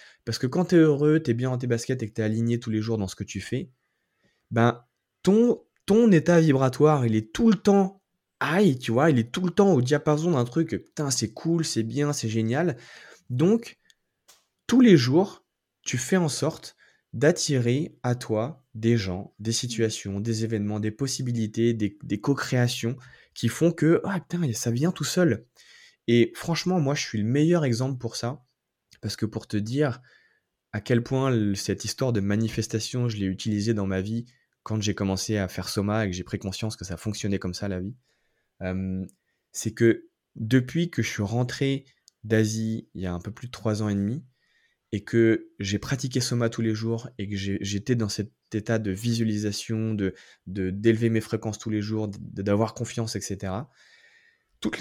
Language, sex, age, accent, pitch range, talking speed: French, male, 20-39, French, 105-140 Hz, 195 wpm